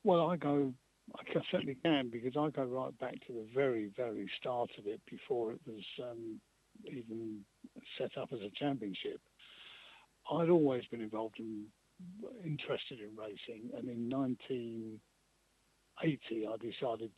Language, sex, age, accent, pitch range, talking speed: English, male, 60-79, British, 110-140 Hz, 145 wpm